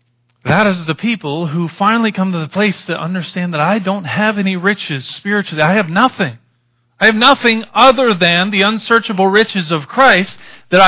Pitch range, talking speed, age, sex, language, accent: 160-220 Hz, 180 wpm, 40-59, male, English, American